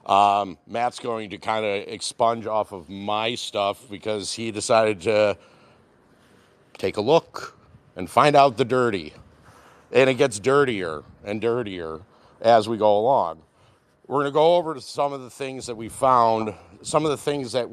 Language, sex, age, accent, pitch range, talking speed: English, male, 50-69, American, 105-130 Hz, 175 wpm